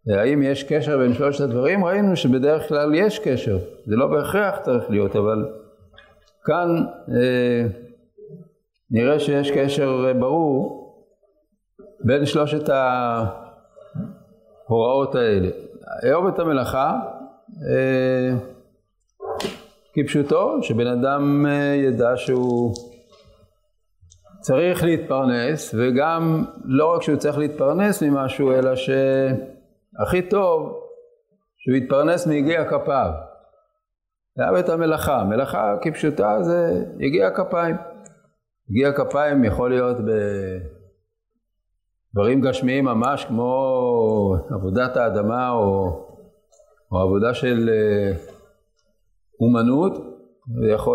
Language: Hebrew